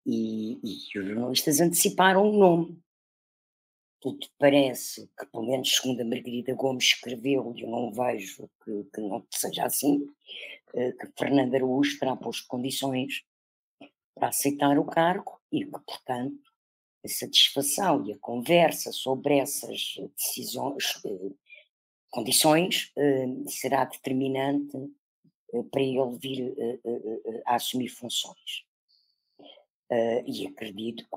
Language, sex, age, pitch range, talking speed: Portuguese, female, 50-69, 120-150 Hz, 120 wpm